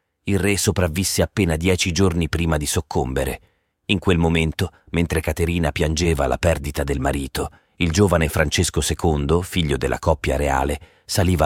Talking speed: 145 wpm